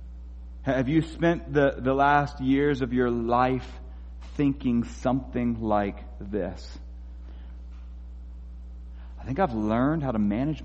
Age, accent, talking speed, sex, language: 40-59, American, 120 wpm, male, English